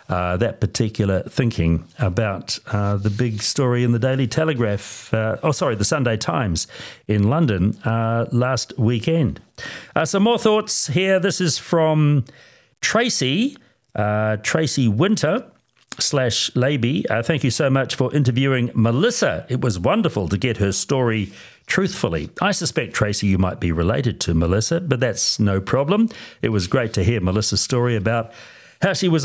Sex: male